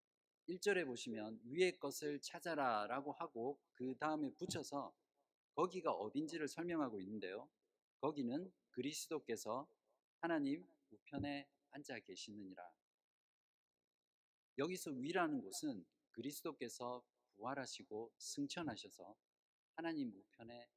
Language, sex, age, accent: Korean, male, 50-69, native